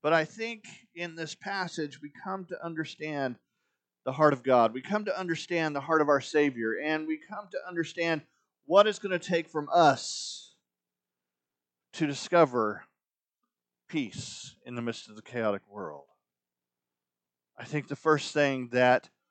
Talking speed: 160 wpm